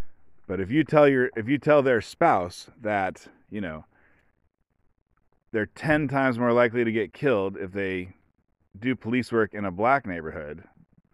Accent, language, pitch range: American, English, 105-130 Hz